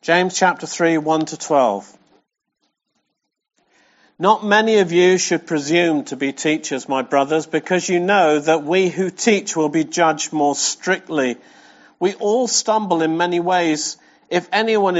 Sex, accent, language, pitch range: male, British, English, 155-205 Hz